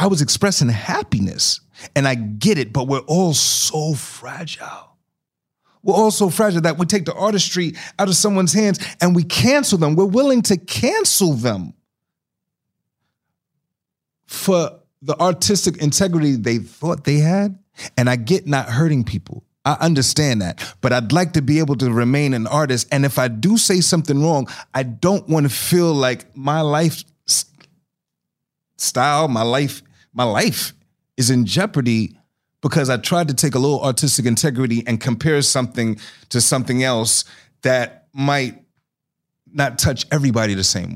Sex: male